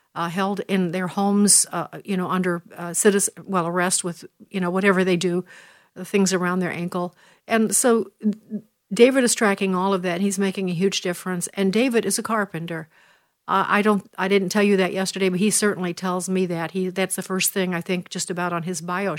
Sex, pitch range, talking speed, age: female, 185-210 Hz, 220 wpm, 50-69